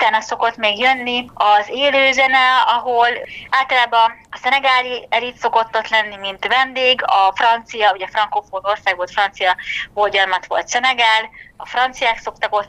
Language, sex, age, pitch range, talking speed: Hungarian, female, 20-39, 205-270 Hz, 140 wpm